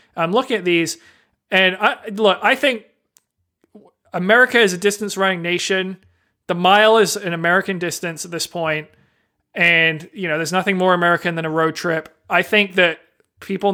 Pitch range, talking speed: 160-190 Hz, 165 wpm